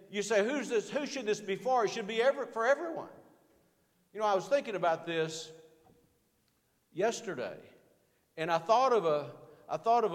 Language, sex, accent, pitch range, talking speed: English, male, American, 150-200 Hz, 185 wpm